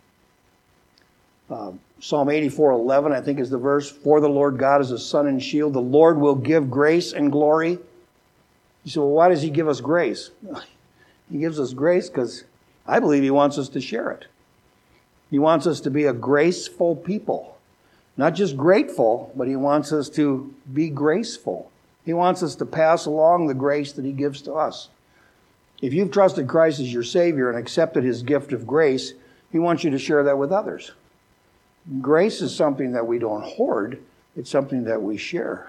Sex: male